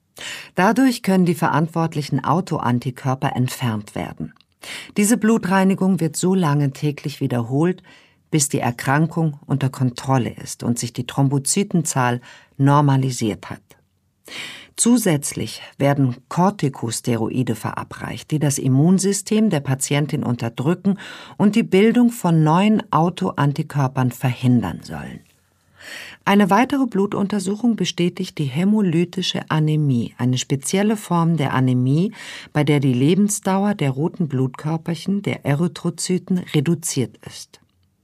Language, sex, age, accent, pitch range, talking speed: German, female, 50-69, German, 130-185 Hz, 105 wpm